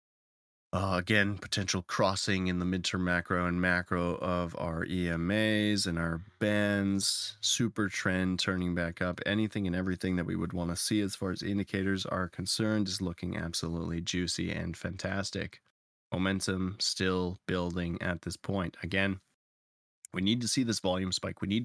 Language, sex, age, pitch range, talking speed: English, male, 20-39, 90-105 Hz, 160 wpm